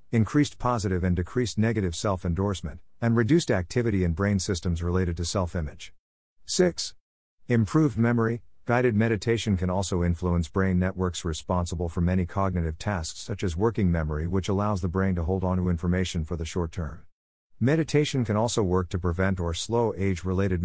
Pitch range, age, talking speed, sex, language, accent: 90-110 Hz, 50-69, 160 wpm, male, English, American